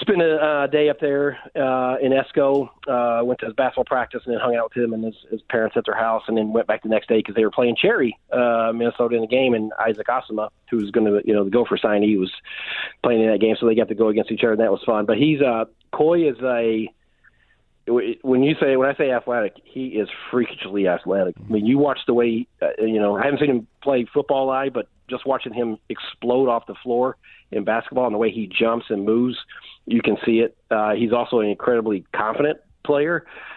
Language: English